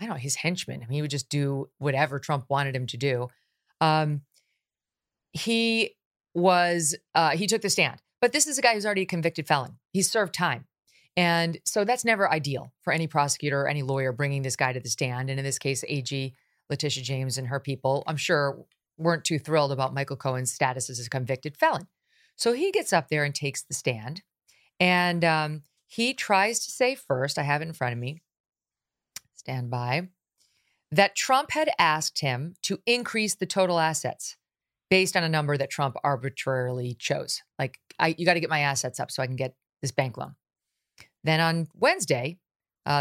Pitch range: 135-185 Hz